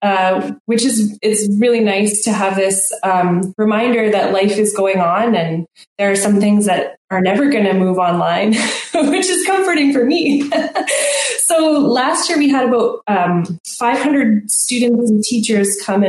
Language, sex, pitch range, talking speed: English, female, 190-235 Hz, 170 wpm